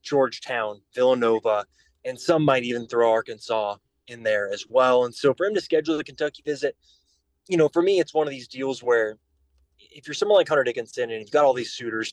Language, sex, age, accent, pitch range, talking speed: English, male, 20-39, American, 120-170 Hz, 215 wpm